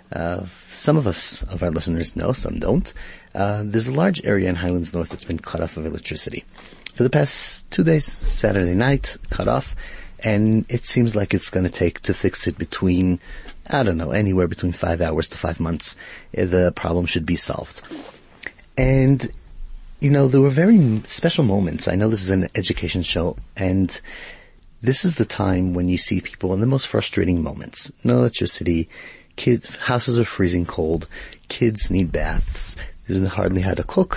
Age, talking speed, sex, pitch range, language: 30-49, 185 wpm, male, 85-115 Hz, English